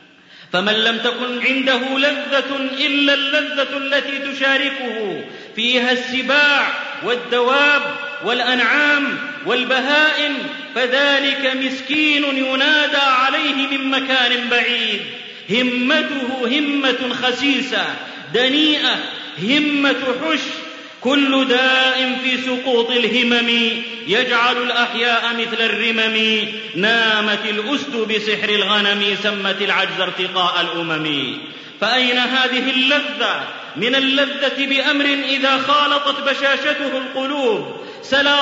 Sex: male